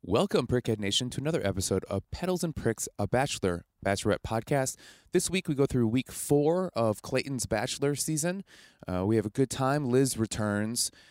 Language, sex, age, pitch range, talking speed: English, male, 20-39, 95-130 Hz, 180 wpm